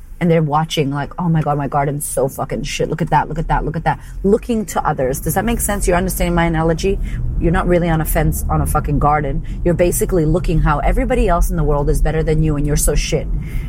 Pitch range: 150-185 Hz